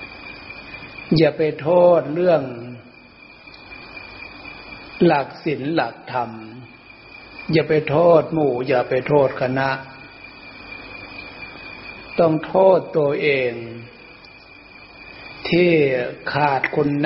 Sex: male